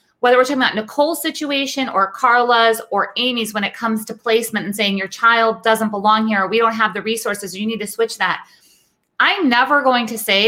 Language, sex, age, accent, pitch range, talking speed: English, female, 30-49, American, 220-275 Hz, 210 wpm